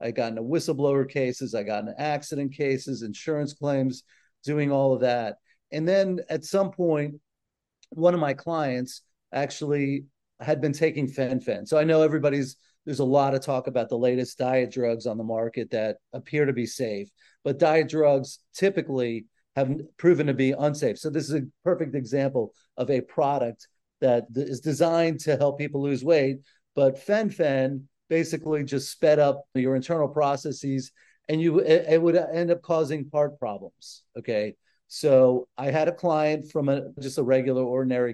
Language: English